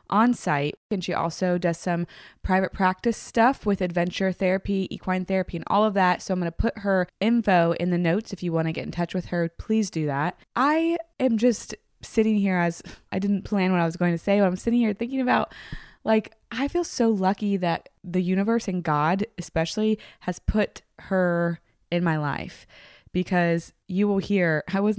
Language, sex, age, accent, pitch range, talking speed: English, female, 20-39, American, 165-205 Hz, 205 wpm